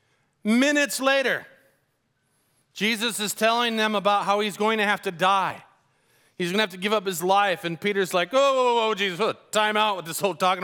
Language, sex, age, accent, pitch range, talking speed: English, male, 40-59, American, 160-210 Hz, 205 wpm